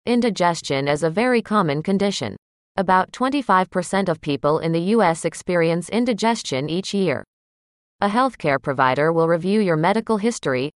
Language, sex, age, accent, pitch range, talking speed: English, female, 30-49, American, 155-215 Hz, 140 wpm